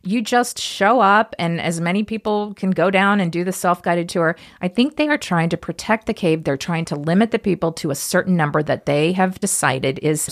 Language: English